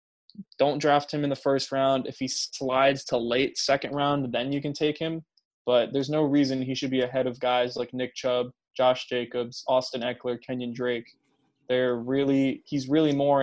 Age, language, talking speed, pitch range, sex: 20-39, English, 190 wpm, 130-150 Hz, male